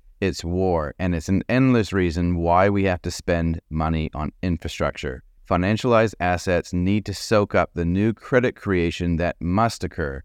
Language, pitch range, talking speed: English, 85-110 Hz, 165 wpm